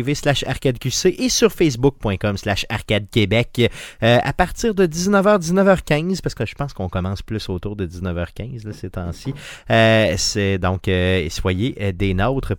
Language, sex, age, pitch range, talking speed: French, male, 30-49, 100-130 Hz, 140 wpm